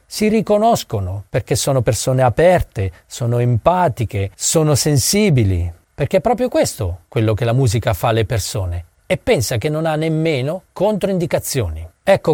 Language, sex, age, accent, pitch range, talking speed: Italian, male, 40-59, native, 120-175 Hz, 140 wpm